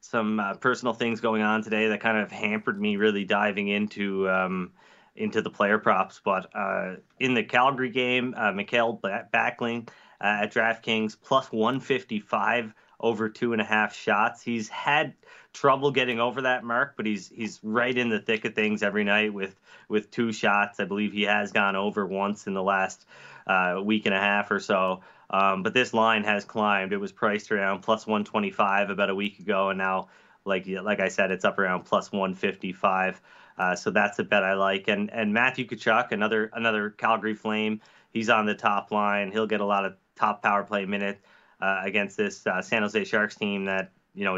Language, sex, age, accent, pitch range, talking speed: English, male, 20-39, American, 100-115 Hz, 195 wpm